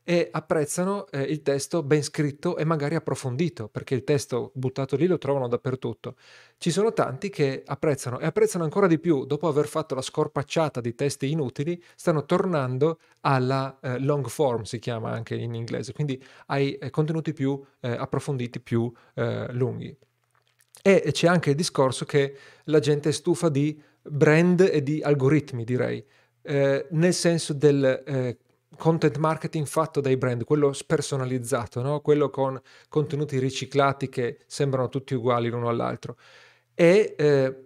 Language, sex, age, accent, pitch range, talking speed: Italian, male, 40-59, native, 130-155 Hz, 155 wpm